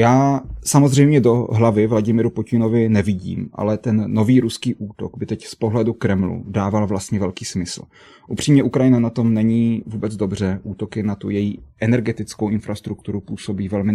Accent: native